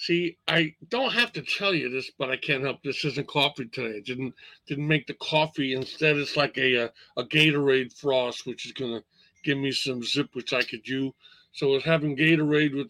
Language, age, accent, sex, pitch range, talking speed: English, 50-69, American, male, 125-155 Hz, 220 wpm